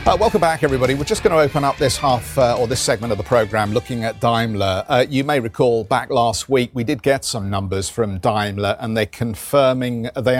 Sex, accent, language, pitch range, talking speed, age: male, British, English, 95-125 Hz, 230 wpm, 50-69